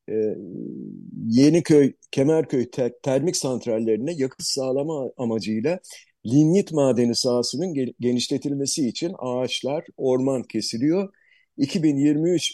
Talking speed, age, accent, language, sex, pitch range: 80 wpm, 50-69, native, Turkish, male, 115-160 Hz